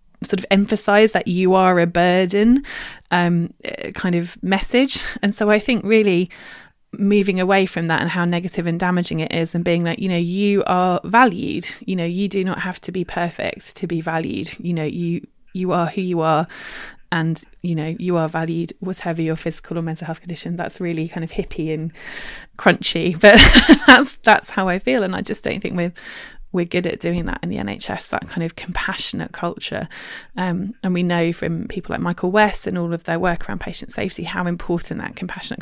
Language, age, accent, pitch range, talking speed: English, 20-39, British, 165-195 Hz, 205 wpm